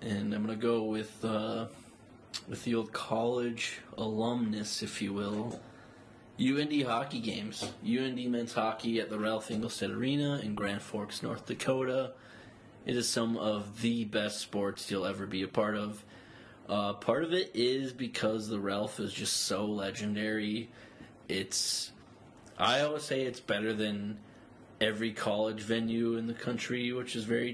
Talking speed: 155 wpm